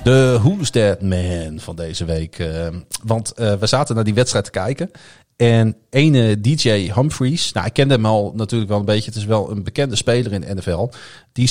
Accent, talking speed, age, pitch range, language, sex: Dutch, 200 wpm, 40-59, 105-135 Hz, Dutch, male